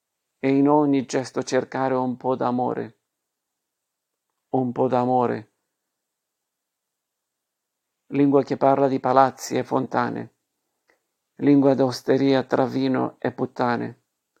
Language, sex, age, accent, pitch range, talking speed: Italian, male, 50-69, native, 125-140 Hz, 100 wpm